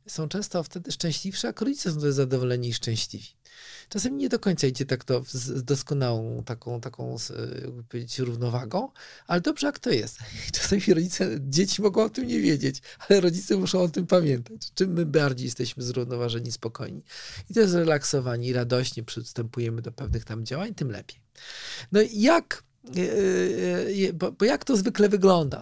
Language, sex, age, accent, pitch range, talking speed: Polish, male, 40-59, native, 130-175 Hz, 160 wpm